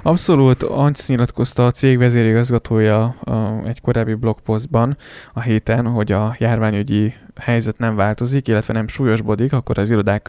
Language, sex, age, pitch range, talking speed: Hungarian, male, 10-29, 105-120 Hz, 135 wpm